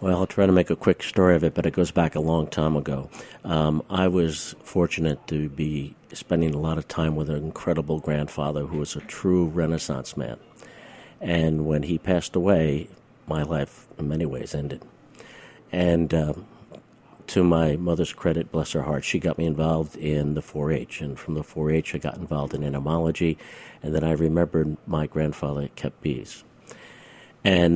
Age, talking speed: 50-69, 180 wpm